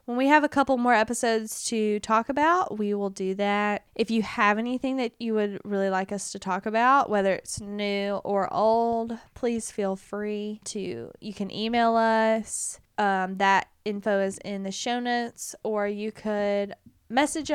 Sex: female